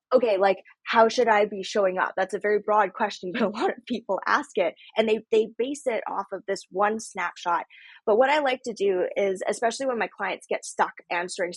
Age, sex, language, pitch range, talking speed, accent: 20-39, female, English, 190-235 Hz, 230 wpm, American